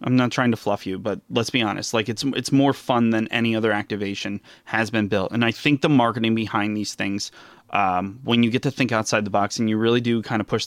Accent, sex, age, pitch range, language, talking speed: American, male, 20-39, 110-135 Hz, English, 260 wpm